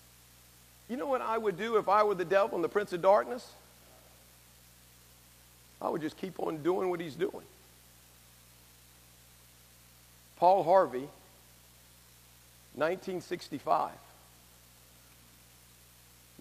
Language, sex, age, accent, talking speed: English, male, 50-69, American, 100 wpm